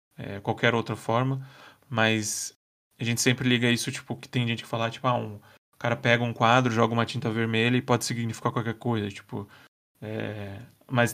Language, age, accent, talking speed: Portuguese, 10-29, Brazilian, 180 wpm